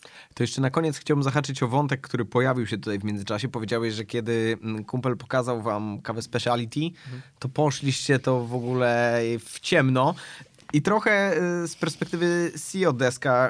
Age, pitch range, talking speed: 20-39, 120-150 Hz, 155 wpm